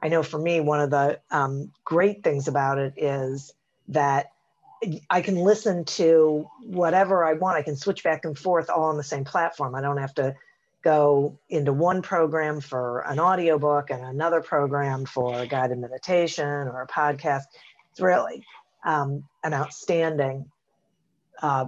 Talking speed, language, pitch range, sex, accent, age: 165 wpm, English, 140-180 Hz, female, American, 50-69